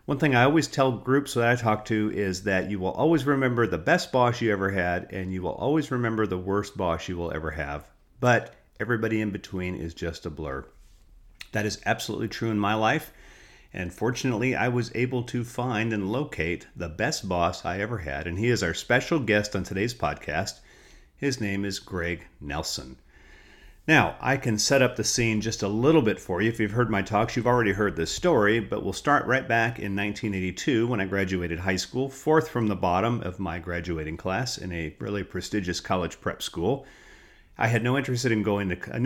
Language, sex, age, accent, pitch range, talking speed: English, male, 40-59, American, 90-120 Hz, 205 wpm